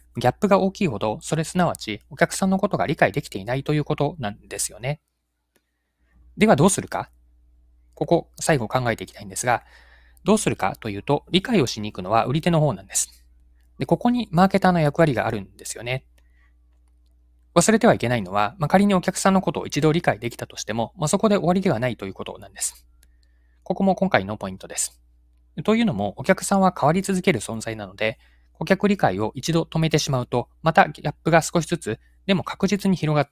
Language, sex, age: Japanese, male, 20-39